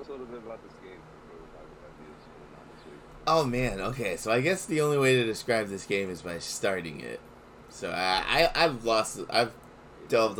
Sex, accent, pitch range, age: male, American, 85-110 Hz, 20-39